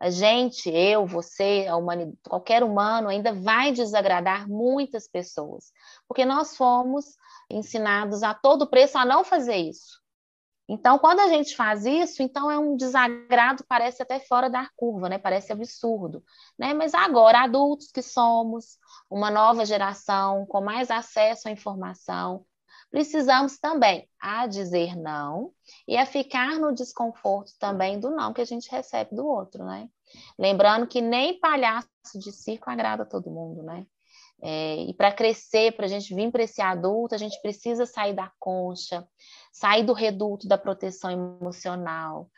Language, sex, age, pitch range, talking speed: Portuguese, female, 20-39, 190-255 Hz, 150 wpm